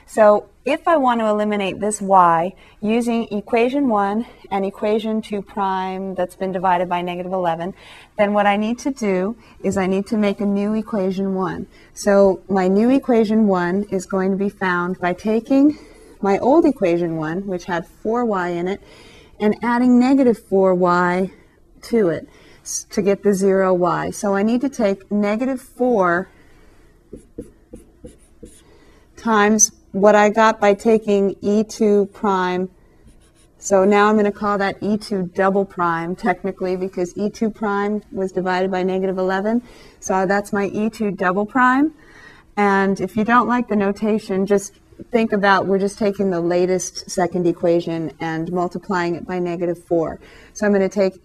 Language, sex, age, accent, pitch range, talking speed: English, female, 40-59, American, 185-215 Hz, 160 wpm